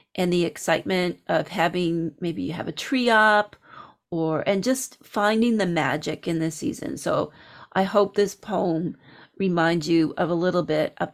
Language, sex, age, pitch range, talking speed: English, female, 40-59, 170-205 Hz, 170 wpm